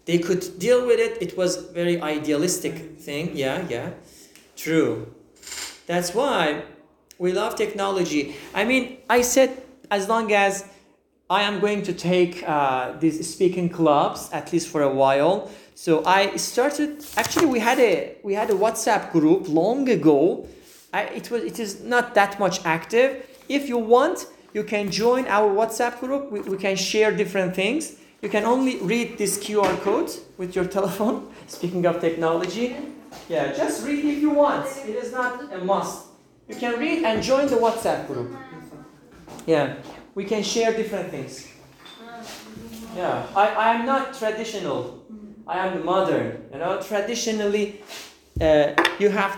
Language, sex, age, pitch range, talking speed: English, male, 40-59, 175-235 Hz, 155 wpm